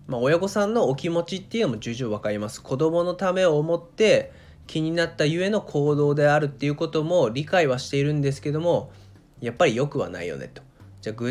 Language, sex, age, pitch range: Japanese, male, 20-39, 120-180 Hz